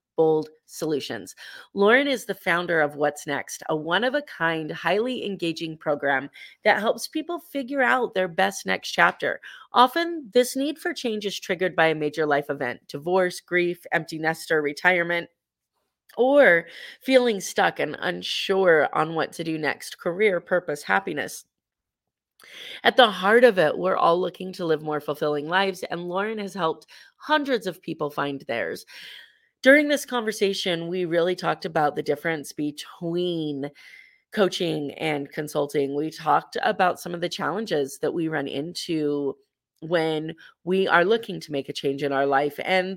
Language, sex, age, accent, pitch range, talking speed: English, female, 30-49, American, 150-200 Hz, 155 wpm